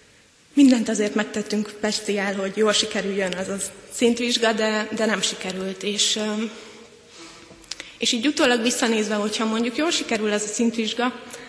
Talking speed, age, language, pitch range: 135 wpm, 20-39, Hungarian, 205-230 Hz